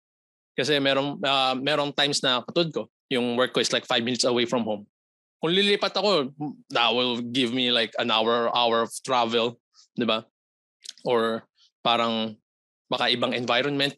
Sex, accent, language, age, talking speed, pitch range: male, native, Filipino, 20-39, 160 wpm, 115-145 Hz